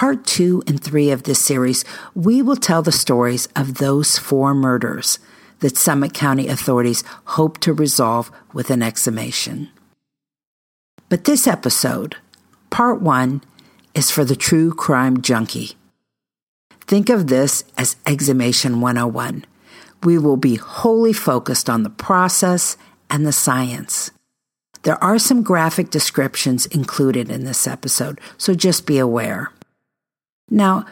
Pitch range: 130-185 Hz